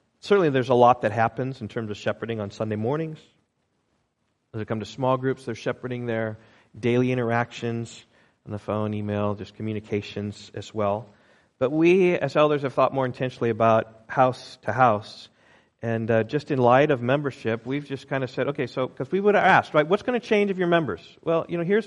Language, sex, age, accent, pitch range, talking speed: English, male, 40-59, American, 110-140 Hz, 205 wpm